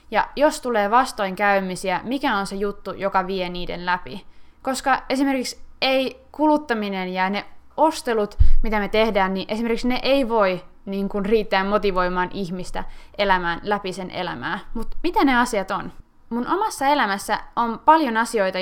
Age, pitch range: 20-39, 195-260 Hz